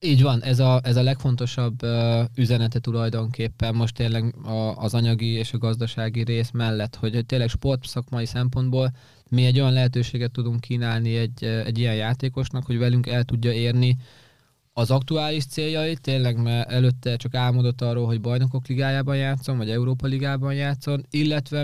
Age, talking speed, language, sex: 20-39, 160 wpm, Hungarian, male